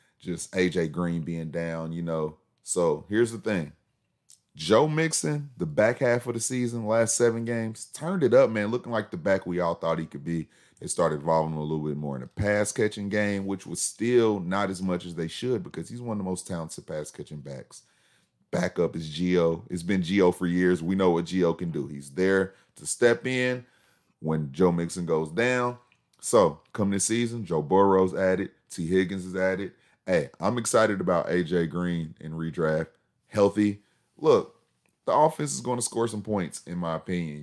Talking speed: 195 wpm